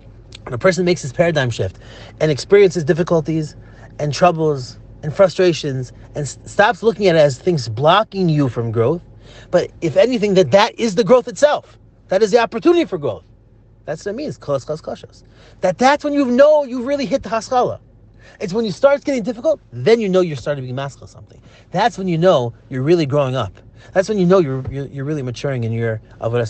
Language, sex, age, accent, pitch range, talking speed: English, male, 30-49, American, 115-180 Hz, 210 wpm